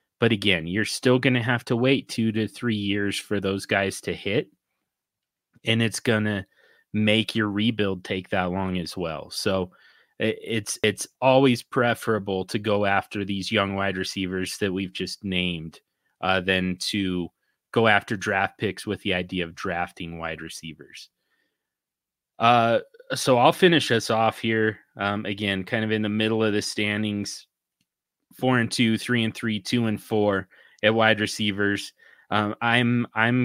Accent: American